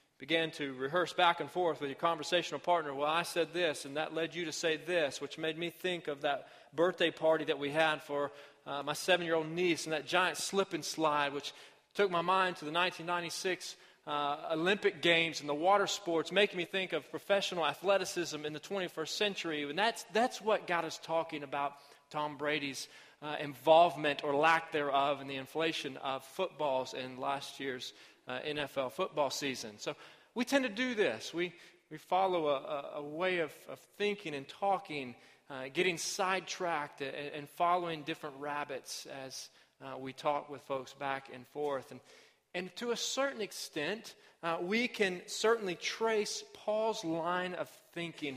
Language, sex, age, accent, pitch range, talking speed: English, male, 30-49, American, 145-180 Hz, 180 wpm